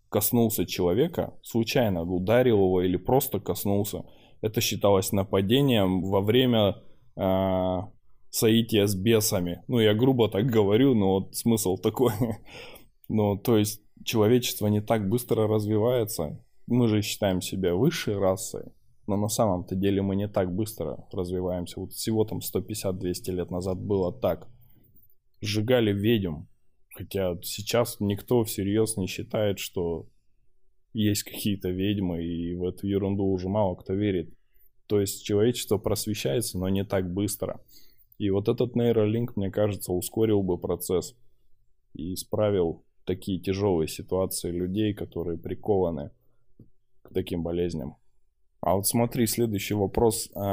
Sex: male